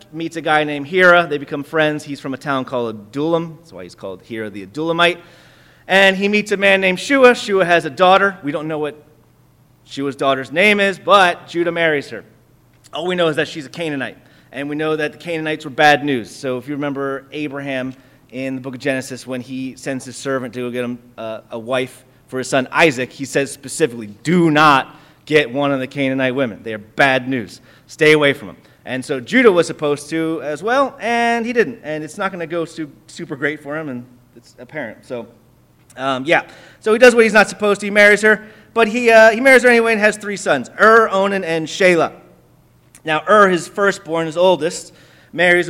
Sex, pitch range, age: male, 135-180 Hz, 30-49